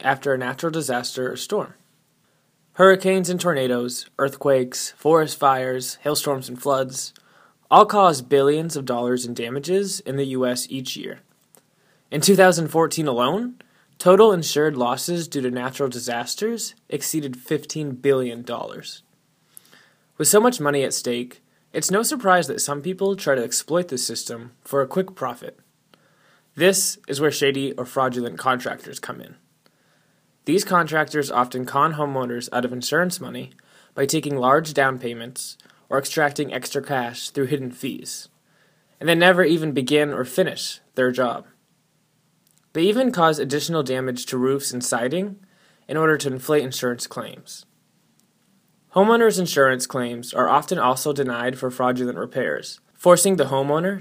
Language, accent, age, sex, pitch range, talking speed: English, American, 20-39, male, 130-175 Hz, 140 wpm